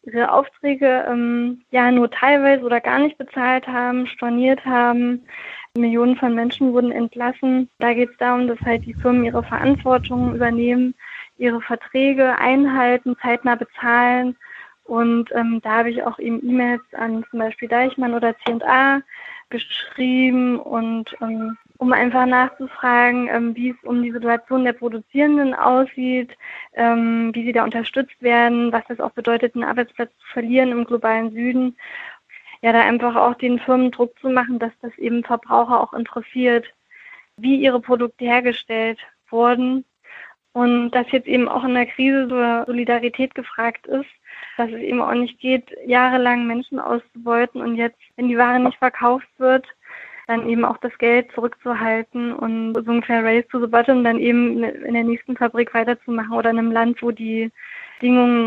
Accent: German